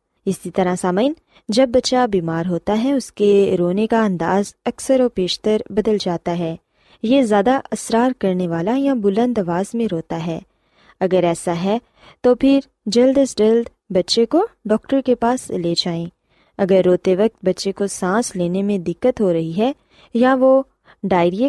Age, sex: 20-39, female